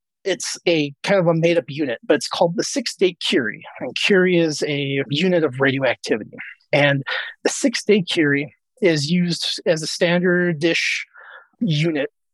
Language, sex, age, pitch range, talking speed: English, male, 30-49, 150-180 Hz, 150 wpm